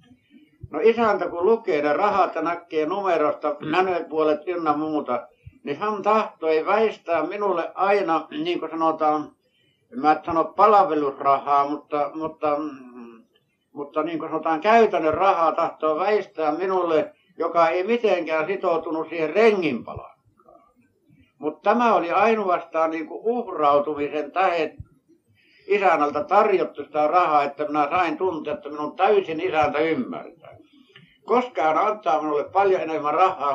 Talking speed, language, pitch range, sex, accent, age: 125 wpm, Finnish, 150-205 Hz, male, native, 60-79